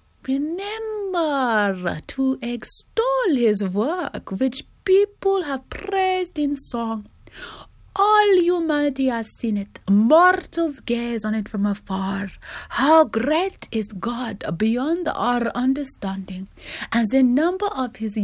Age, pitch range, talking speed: 30-49, 200-325 Hz, 110 wpm